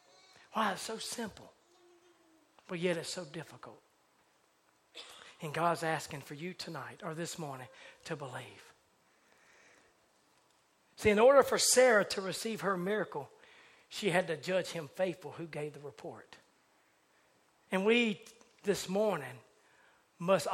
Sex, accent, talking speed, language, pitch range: male, American, 130 wpm, English, 150-215 Hz